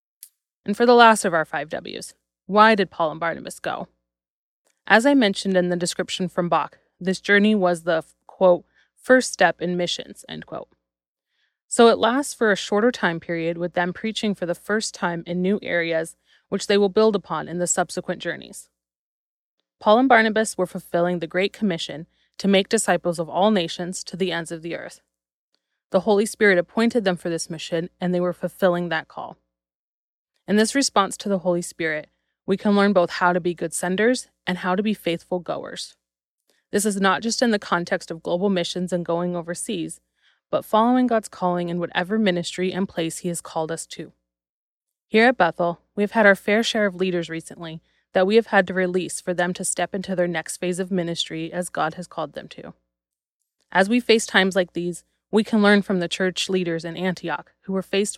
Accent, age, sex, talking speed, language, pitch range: American, 20-39, female, 200 wpm, English, 170-205 Hz